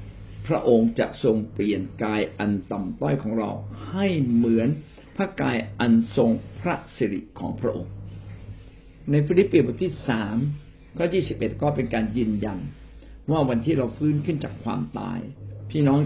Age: 60-79